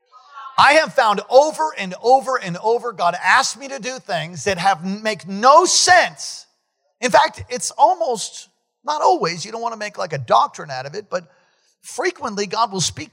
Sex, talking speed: male, 190 wpm